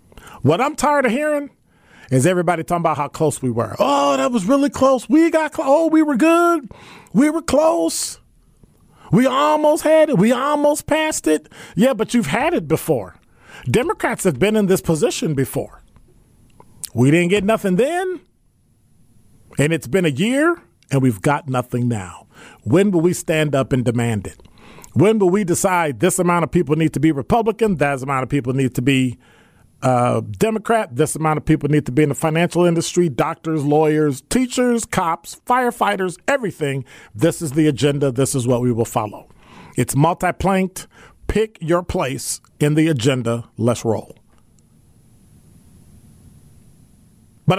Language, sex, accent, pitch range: English, male, American, 145-245 Hz